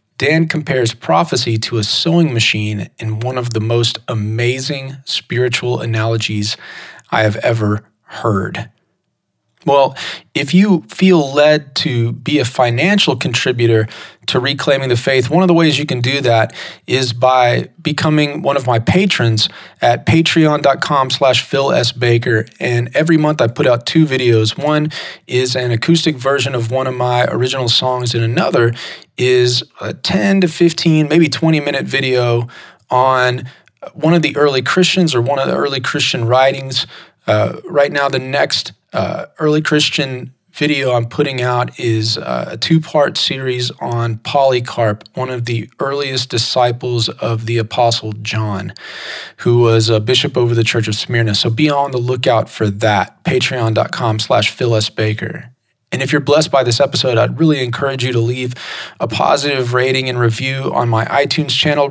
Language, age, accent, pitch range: English, 30-49, American, 115-145 Hz